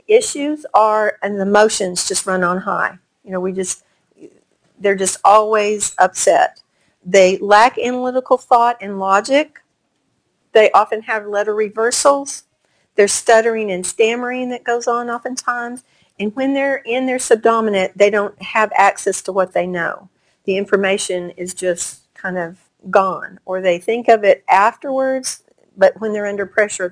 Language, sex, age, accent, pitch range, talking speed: English, female, 50-69, American, 195-255 Hz, 150 wpm